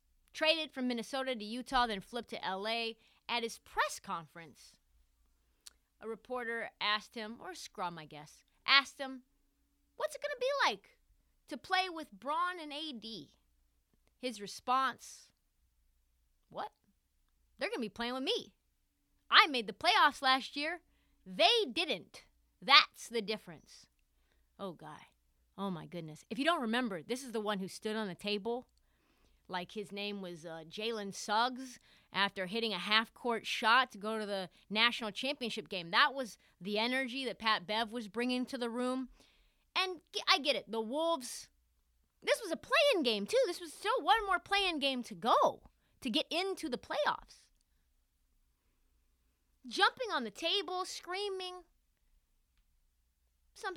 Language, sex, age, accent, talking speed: English, female, 30-49, American, 155 wpm